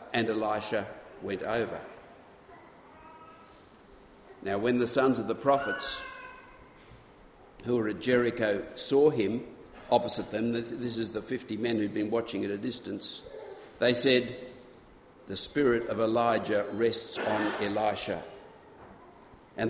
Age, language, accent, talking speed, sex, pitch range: 50-69, English, Australian, 120 wpm, male, 115-140 Hz